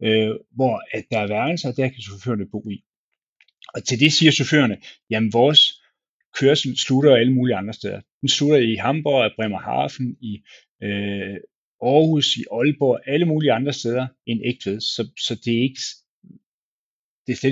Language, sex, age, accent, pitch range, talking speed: Danish, male, 30-49, native, 105-135 Hz, 165 wpm